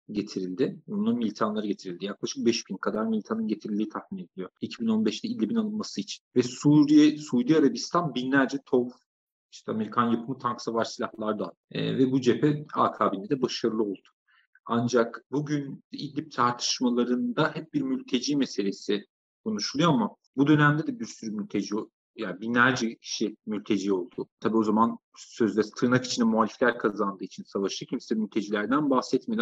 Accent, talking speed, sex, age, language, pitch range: native, 145 wpm, male, 40-59, Turkish, 110-145 Hz